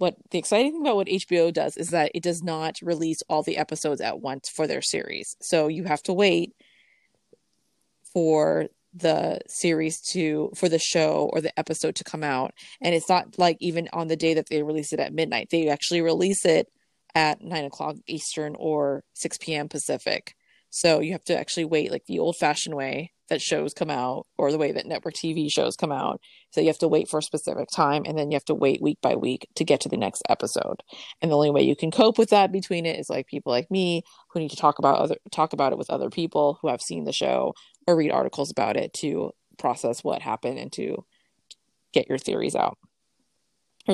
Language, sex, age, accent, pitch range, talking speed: English, female, 20-39, American, 150-175 Hz, 225 wpm